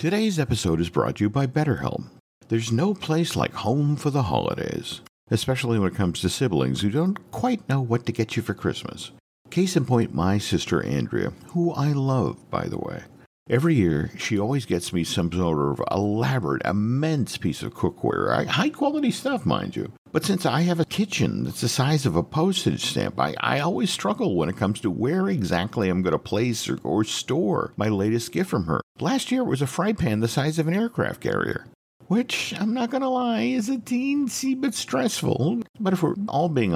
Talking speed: 205 wpm